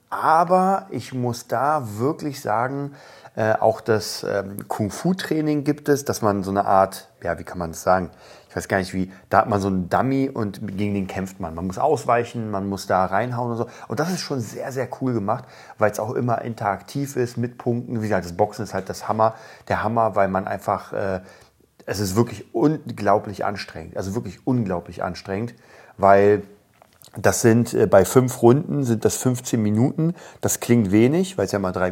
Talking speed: 200 wpm